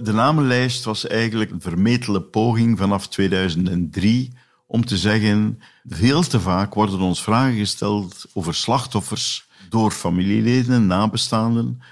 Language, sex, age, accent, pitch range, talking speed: Dutch, male, 50-69, Dutch, 95-115 Hz, 120 wpm